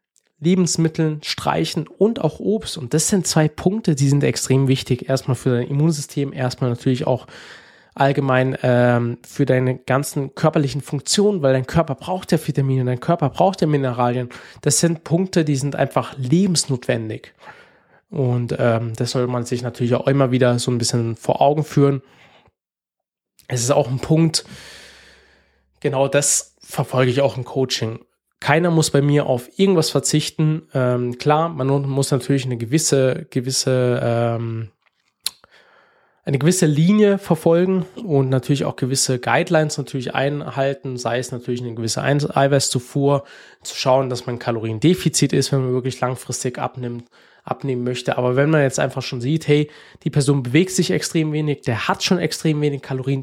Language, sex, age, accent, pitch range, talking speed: German, male, 20-39, German, 125-155 Hz, 160 wpm